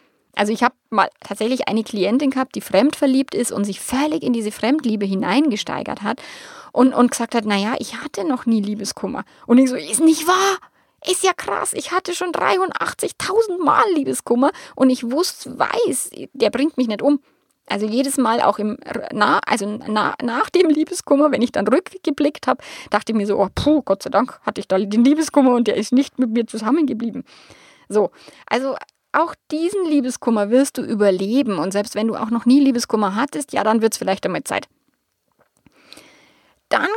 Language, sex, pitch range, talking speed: German, female, 215-300 Hz, 180 wpm